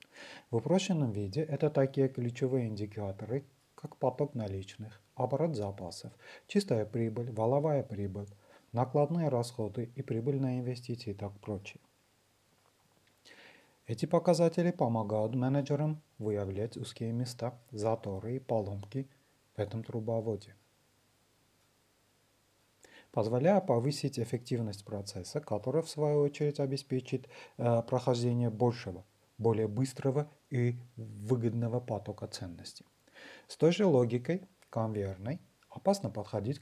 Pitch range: 105-135 Hz